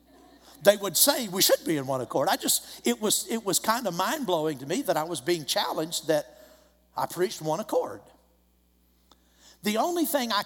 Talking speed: 195 wpm